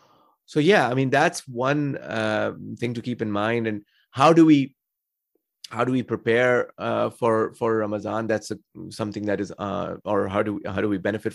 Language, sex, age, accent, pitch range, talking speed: English, male, 30-49, Indian, 105-115 Hz, 200 wpm